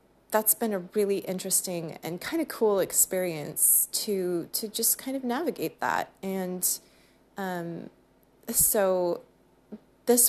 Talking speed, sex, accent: 120 wpm, female, American